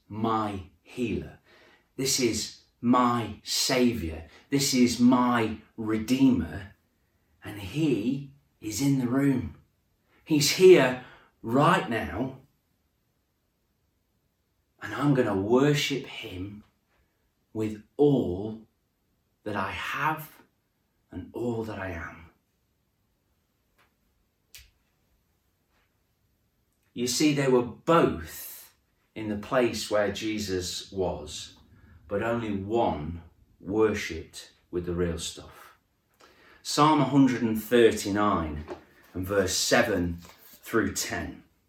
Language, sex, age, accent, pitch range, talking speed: English, male, 40-59, British, 95-130 Hz, 90 wpm